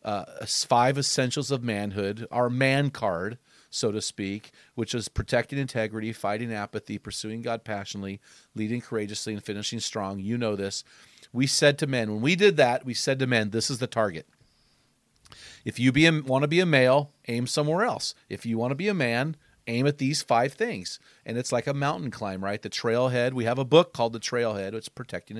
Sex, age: male, 40-59